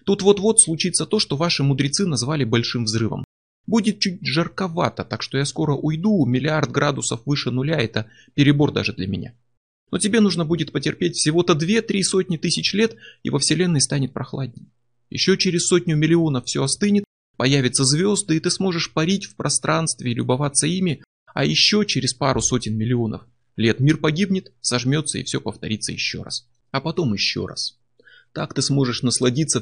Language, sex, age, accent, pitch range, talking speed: Russian, male, 30-49, native, 120-160 Hz, 165 wpm